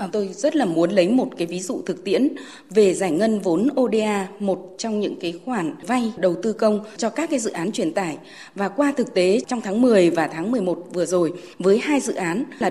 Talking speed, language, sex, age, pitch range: 230 wpm, Vietnamese, female, 20-39, 185-240 Hz